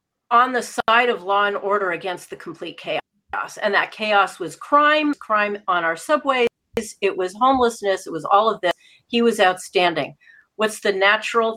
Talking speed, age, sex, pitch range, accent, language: 175 wpm, 40-59, female, 185-230 Hz, American, English